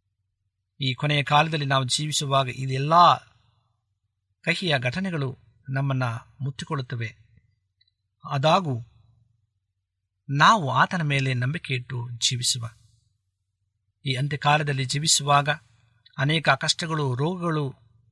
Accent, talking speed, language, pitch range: native, 75 wpm, Kannada, 115-150 Hz